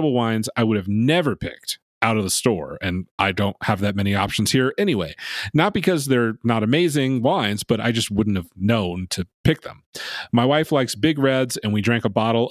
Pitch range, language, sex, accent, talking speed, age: 105-130 Hz, English, male, American, 210 wpm, 30-49